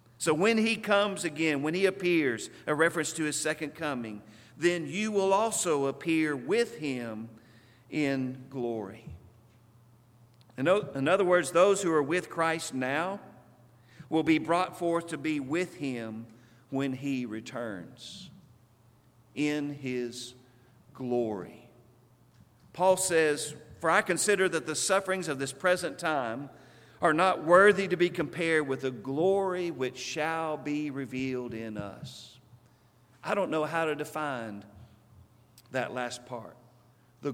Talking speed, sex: 135 wpm, male